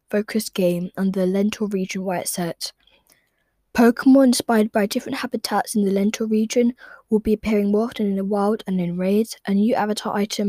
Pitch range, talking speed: 200-235 Hz, 190 wpm